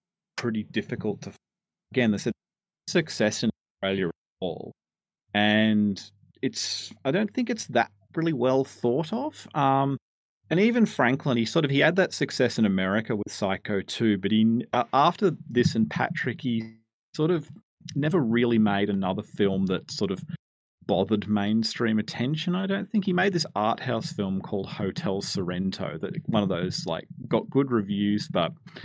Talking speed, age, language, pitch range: 170 wpm, 30-49, English, 100-155 Hz